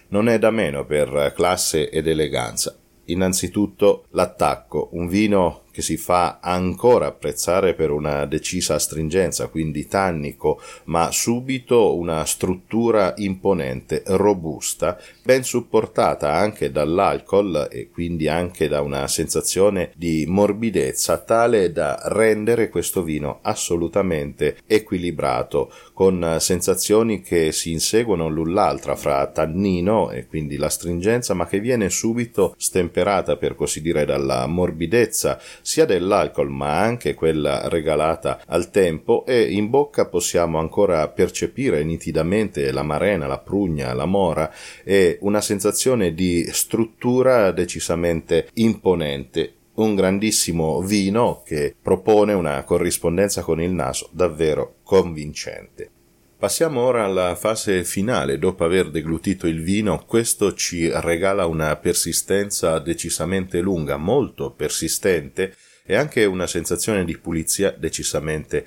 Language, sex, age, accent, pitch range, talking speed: Italian, male, 40-59, native, 80-105 Hz, 120 wpm